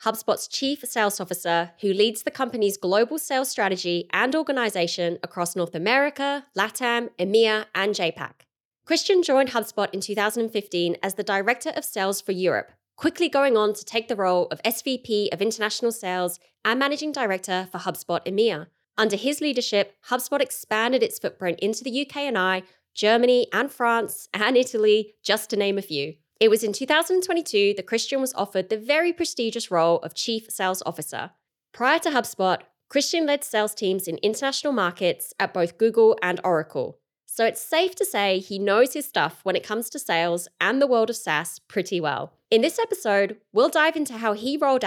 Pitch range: 185-255 Hz